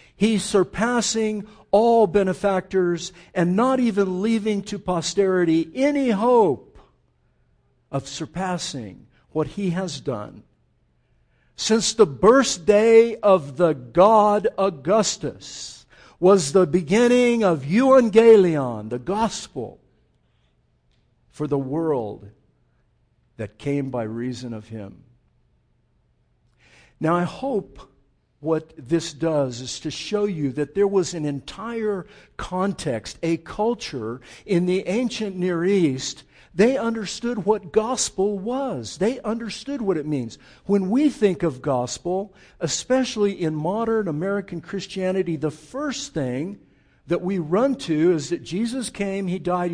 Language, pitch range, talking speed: English, 155-215 Hz, 120 wpm